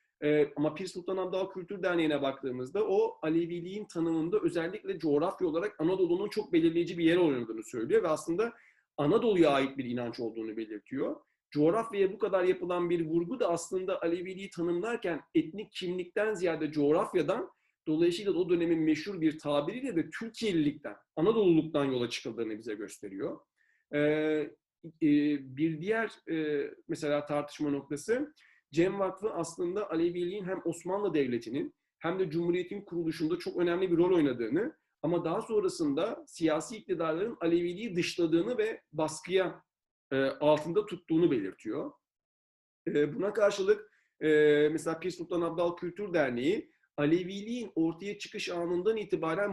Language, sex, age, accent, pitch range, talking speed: Turkish, male, 40-59, native, 155-205 Hz, 125 wpm